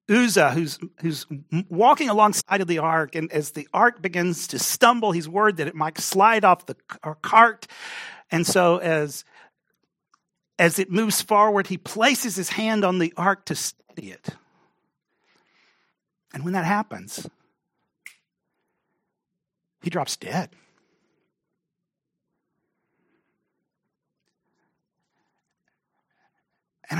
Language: English